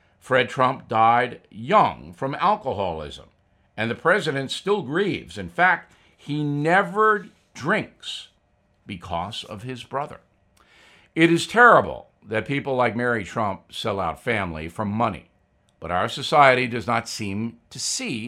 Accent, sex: American, male